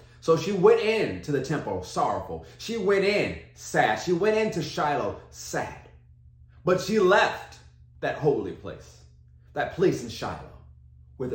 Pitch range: 90-120 Hz